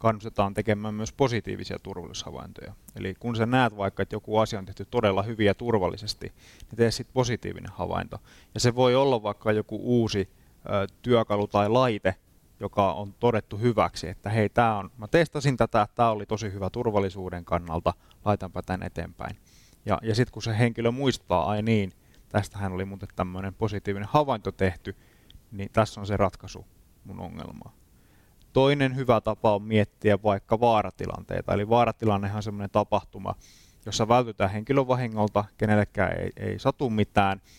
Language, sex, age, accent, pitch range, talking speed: Finnish, male, 20-39, native, 95-115 Hz, 155 wpm